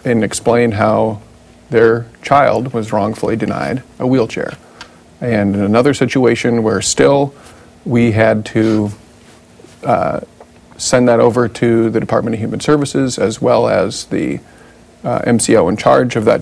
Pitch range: 110-130 Hz